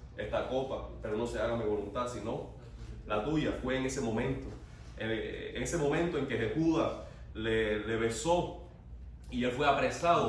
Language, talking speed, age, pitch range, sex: Spanish, 165 wpm, 30-49, 110-145 Hz, male